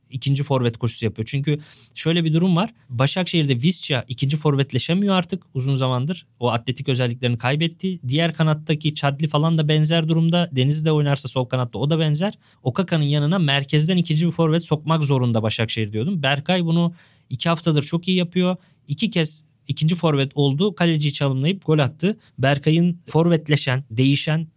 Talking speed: 155 wpm